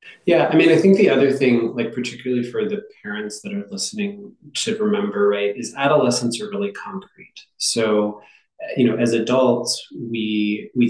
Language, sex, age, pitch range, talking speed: English, male, 20-39, 105-150 Hz, 170 wpm